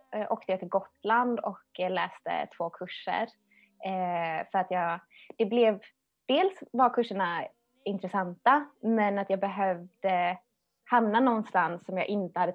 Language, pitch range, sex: Swedish, 185-240 Hz, female